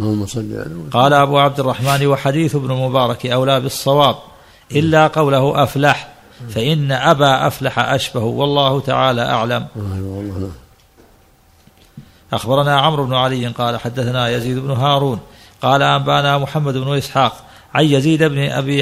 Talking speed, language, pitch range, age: 115 wpm, Arabic, 120-140 Hz, 50-69